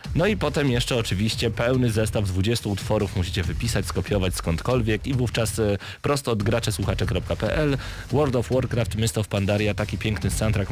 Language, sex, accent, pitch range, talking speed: Polish, male, native, 95-115 Hz, 150 wpm